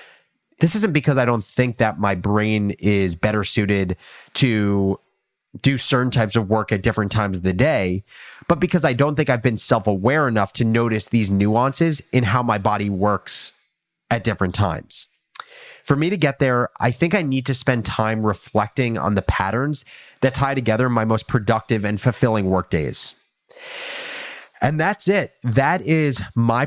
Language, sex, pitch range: English, male, 105-135 Hz